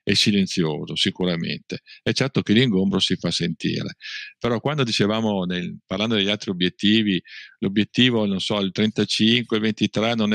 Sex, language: male, Italian